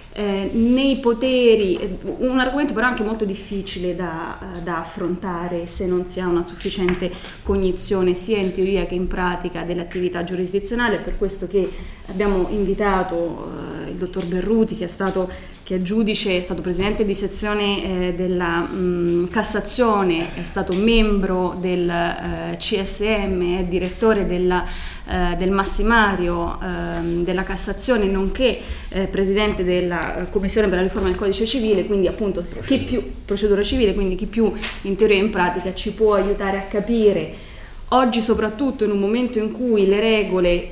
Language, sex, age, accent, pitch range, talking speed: Italian, female, 20-39, native, 180-210 Hz, 150 wpm